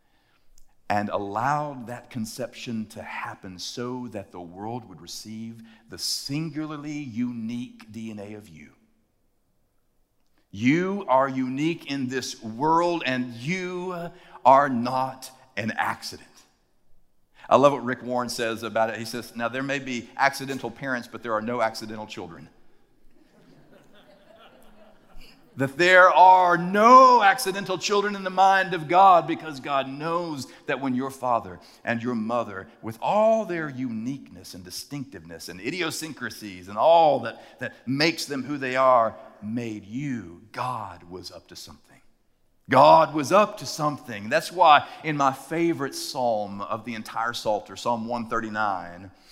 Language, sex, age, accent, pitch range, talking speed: English, male, 50-69, American, 110-155 Hz, 140 wpm